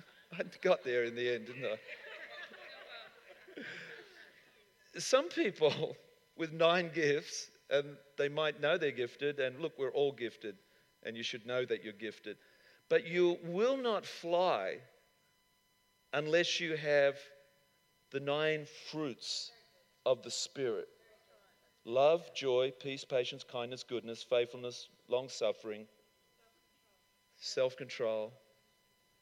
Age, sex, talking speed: 50-69, male, 110 wpm